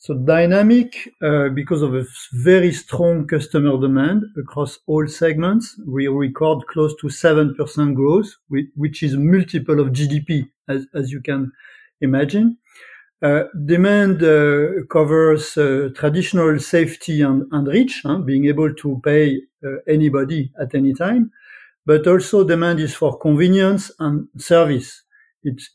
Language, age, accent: English, 50-69, French